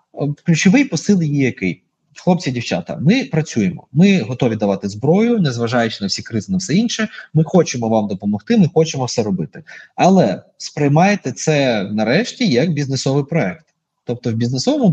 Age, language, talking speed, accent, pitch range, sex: 20-39, Ukrainian, 150 wpm, native, 145-190 Hz, male